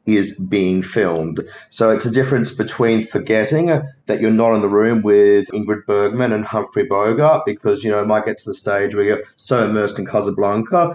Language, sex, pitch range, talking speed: English, male, 105-115 Hz, 195 wpm